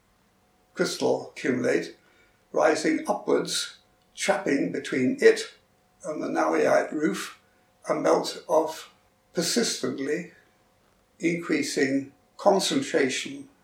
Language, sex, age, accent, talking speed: English, male, 60-79, British, 75 wpm